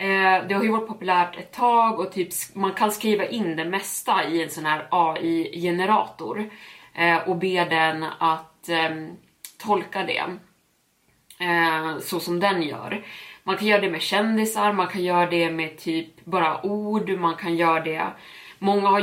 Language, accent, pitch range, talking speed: Swedish, native, 165-195 Hz, 160 wpm